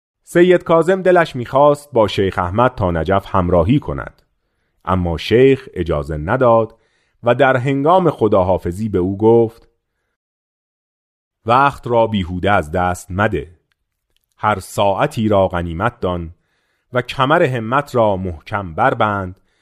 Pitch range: 90-130 Hz